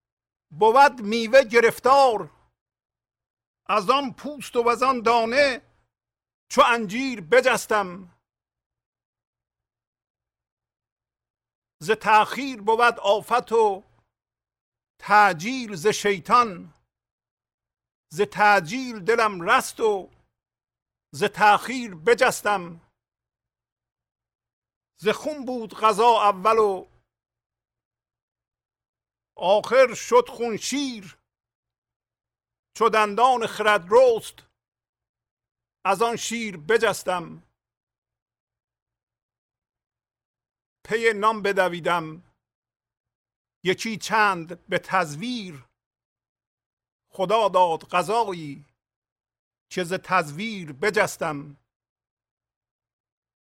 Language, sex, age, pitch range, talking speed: English, male, 50-69, 180-240 Hz, 65 wpm